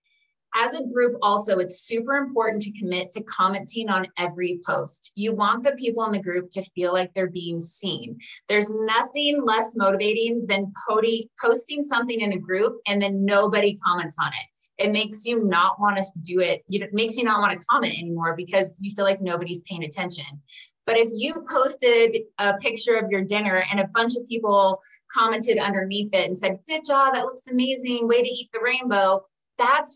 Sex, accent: female, American